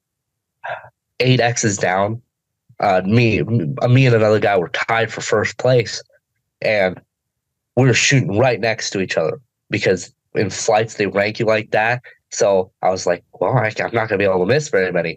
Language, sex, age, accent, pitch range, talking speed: English, male, 20-39, American, 110-135 Hz, 180 wpm